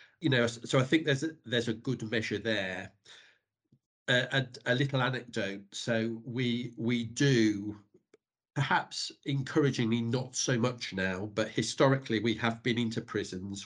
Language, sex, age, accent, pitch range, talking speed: English, male, 50-69, British, 110-125 Hz, 150 wpm